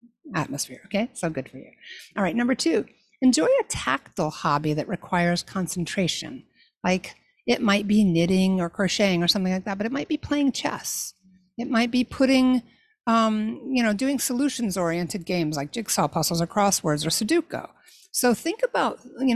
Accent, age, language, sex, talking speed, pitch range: American, 60-79, English, female, 175 wpm, 185-240 Hz